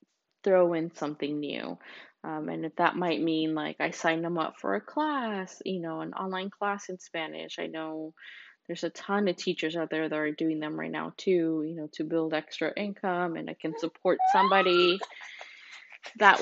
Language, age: English, 20-39